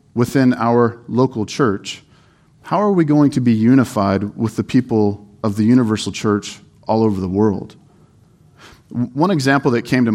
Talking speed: 160 wpm